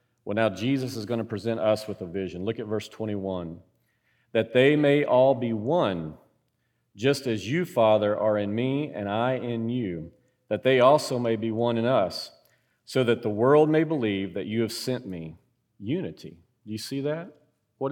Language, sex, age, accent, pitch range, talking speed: English, male, 40-59, American, 105-125 Hz, 190 wpm